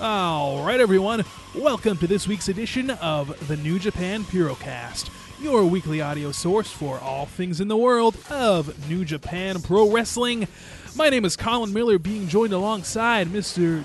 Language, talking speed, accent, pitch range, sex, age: English, 155 wpm, American, 155-210 Hz, male, 20-39